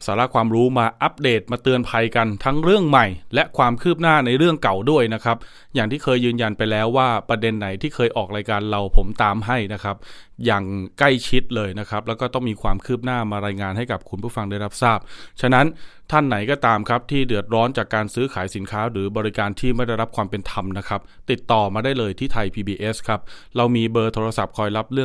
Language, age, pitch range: Thai, 20-39, 105-125 Hz